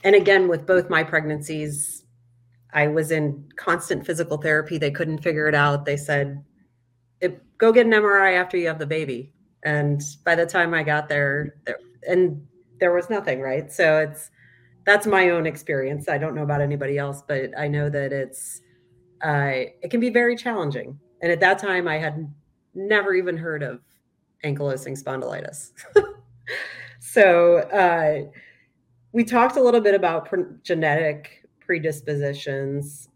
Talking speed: 155 wpm